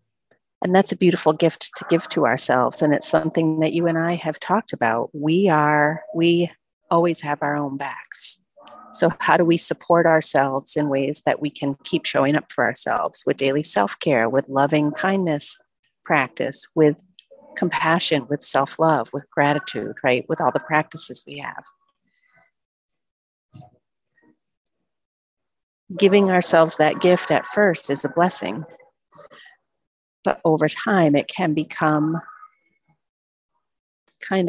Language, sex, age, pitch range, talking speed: English, female, 40-59, 150-185 Hz, 135 wpm